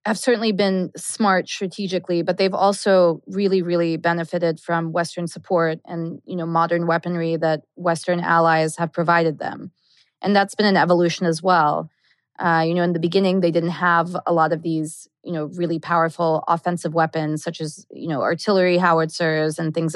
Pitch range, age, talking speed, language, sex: 165-180 Hz, 20-39, 175 wpm, English, female